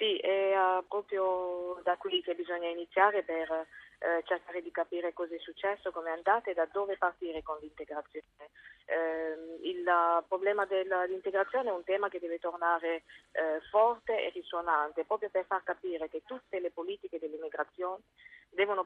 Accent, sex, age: native, female, 30-49